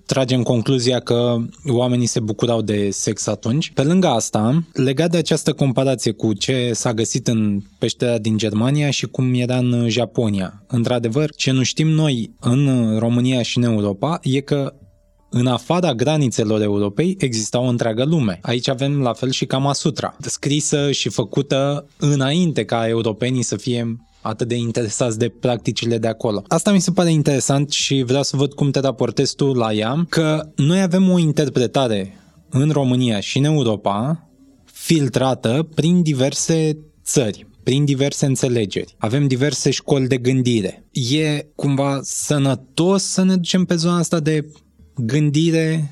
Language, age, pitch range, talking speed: Romanian, 20-39, 120-150 Hz, 155 wpm